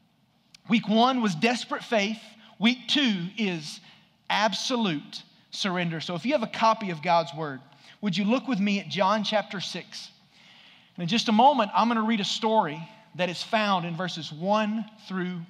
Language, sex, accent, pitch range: English, male, American, 175-225 Hz